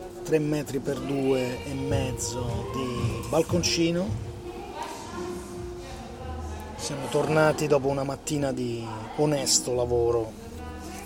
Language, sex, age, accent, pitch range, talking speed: Italian, male, 30-49, native, 110-140 Hz, 85 wpm